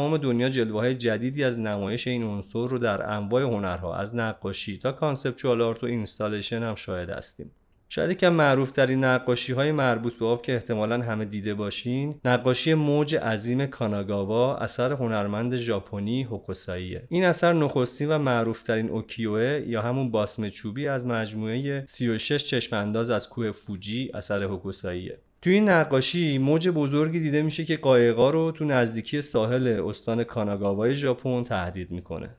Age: 30-49